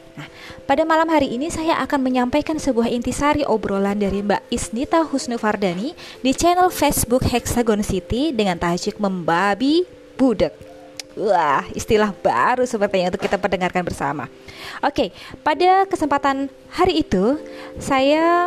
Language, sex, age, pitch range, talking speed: Indonesian, female, 20-39, 205-295 Hz, 130 wpm